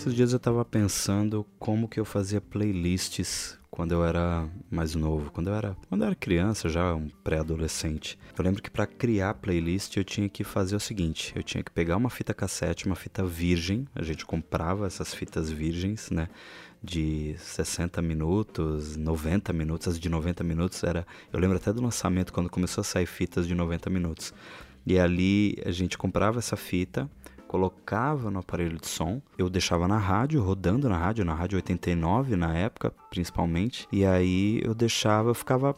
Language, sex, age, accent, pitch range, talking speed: Portuguese, male, 20-39, Brazilian, 85-110 Hz, 180 wpm